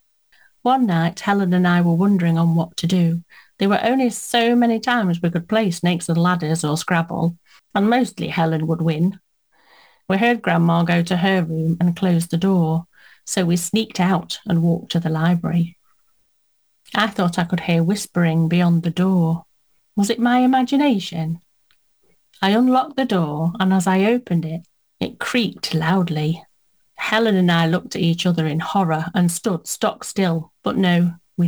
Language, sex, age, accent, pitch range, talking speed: English, female, 40-59, British, 170-205 Hz, 175 wpm